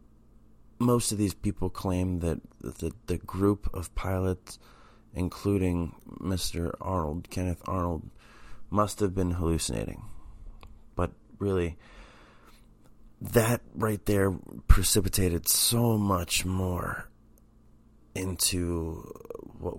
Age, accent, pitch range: 30-49, American, 85-110 Hz